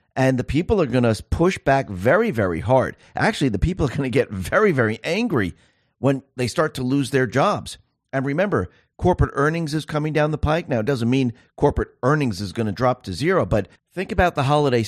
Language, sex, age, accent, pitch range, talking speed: English, male, 50-69, American, 110-150 Hz, 205 wpm